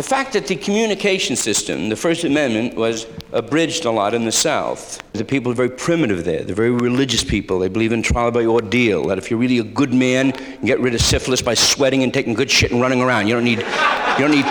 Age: 60-79